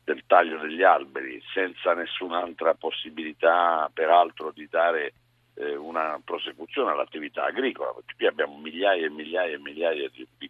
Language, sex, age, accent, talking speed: Italian, male, 50-69, native, 145 wpm